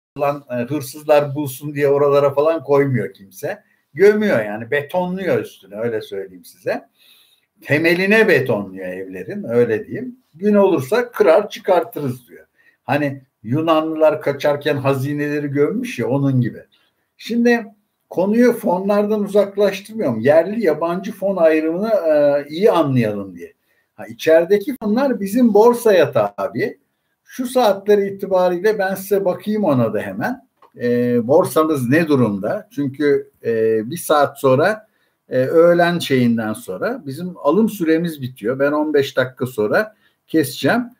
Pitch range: 140-205 Hz